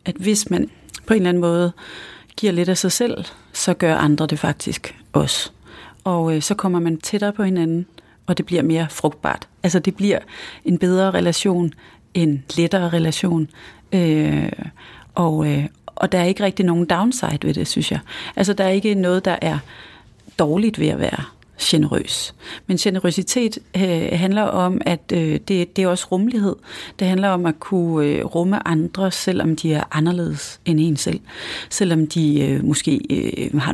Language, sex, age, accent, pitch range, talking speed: English, female, 30-49, Danish, 155-190 Hz, 175 wpm